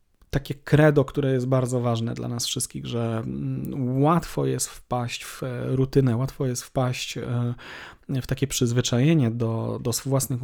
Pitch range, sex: 120-145 Hz, male